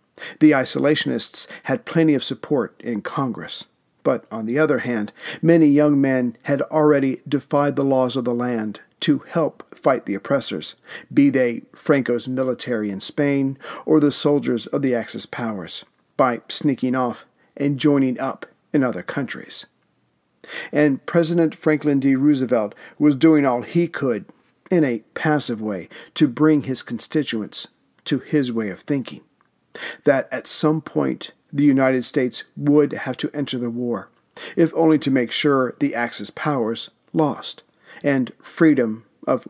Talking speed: 150 wpm